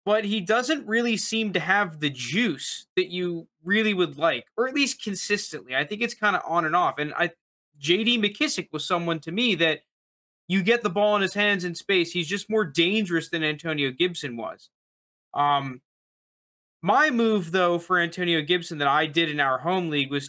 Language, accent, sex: English, American, male